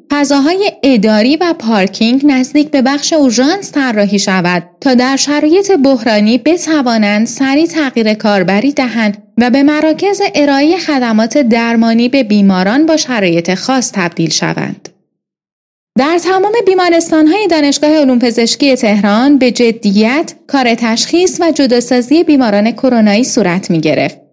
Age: 30-49